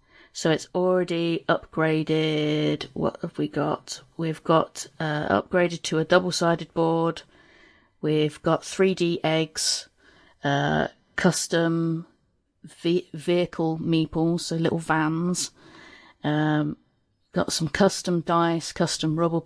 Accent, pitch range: British, 155-175 Hz